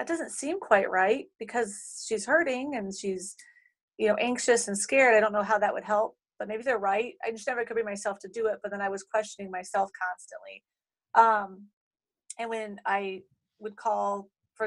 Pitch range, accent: 195-225 Hz, American